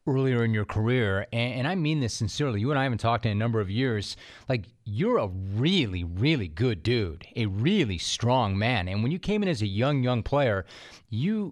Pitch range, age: 115-150 Hz, 30-49